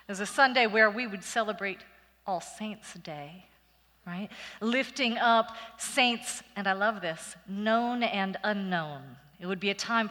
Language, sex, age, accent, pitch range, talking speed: English, female, 40-59, American, 180-235 Hz, 155 wpm